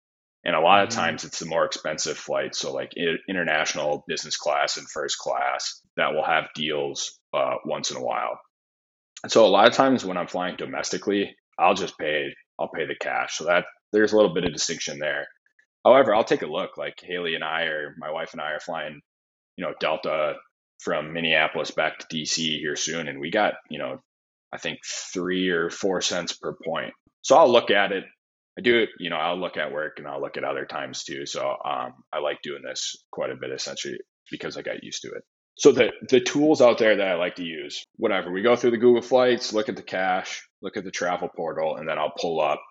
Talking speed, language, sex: 225 wpm, English, male